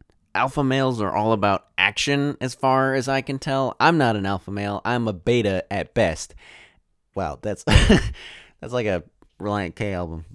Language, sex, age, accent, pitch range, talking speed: English, male, 20-39, American, 105-145 Hz, 175 wpm